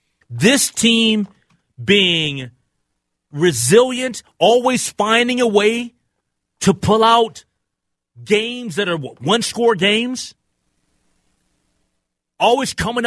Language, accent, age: English, American, 40-59